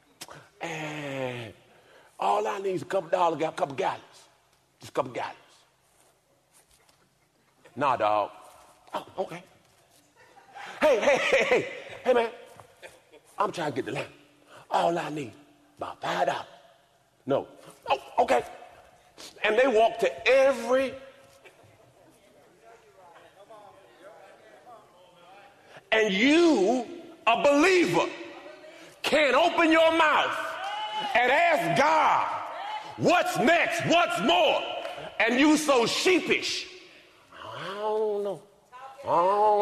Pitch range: 210-335 Hz